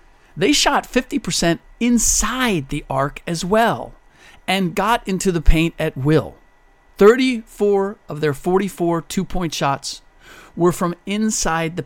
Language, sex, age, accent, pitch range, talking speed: English, male, 50-69, American, 150-200 Hz, 125 wpm